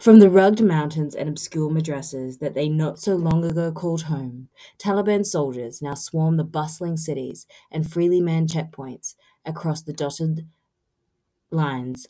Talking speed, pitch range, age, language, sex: 150 wpm, 140-175 Hz, 20-39, English, female